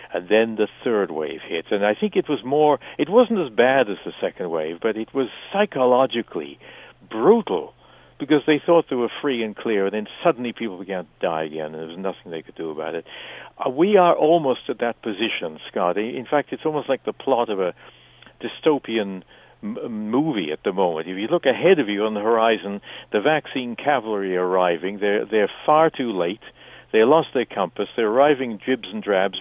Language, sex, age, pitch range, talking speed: English, male, 60-79, 100-145 Hz, 205 wpm